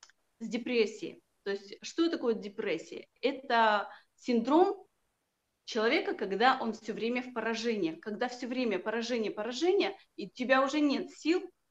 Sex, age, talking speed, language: female, 30-49, 140 wpm, Russian